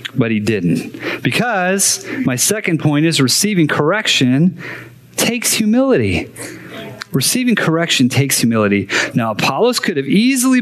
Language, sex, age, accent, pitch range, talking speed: English, male, 30-49, American, 115-160 Hz, 120 wpm